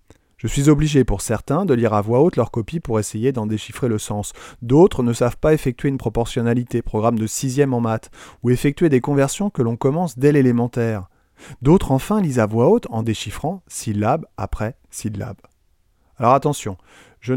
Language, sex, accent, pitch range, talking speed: French, male, French, 110-145 Hz, 185 wpm